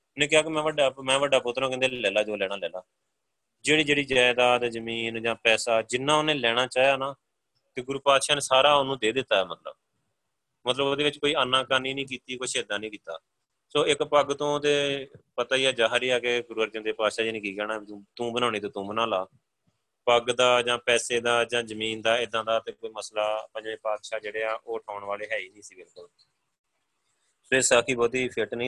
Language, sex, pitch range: Punjabi, male, 110-135 Hz